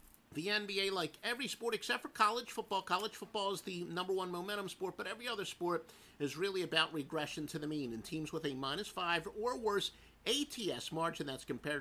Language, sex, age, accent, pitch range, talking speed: English, male, 50-69, American, 150-205 Hz, 205 wpm